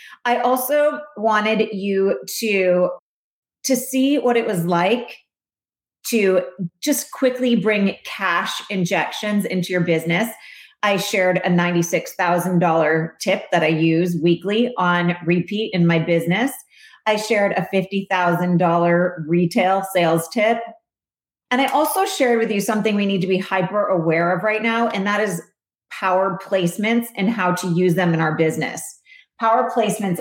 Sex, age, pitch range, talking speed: female, 30-49, 175-230 Hz, 145 wpm